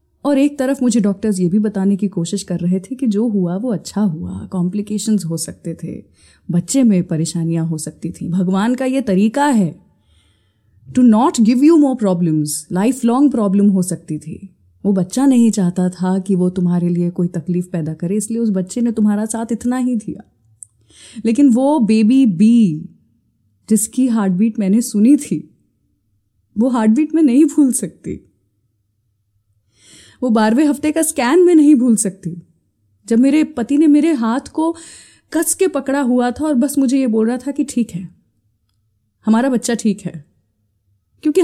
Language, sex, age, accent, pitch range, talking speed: Hindi, female, 20-39, native, 170-280 Hz, 170 wpm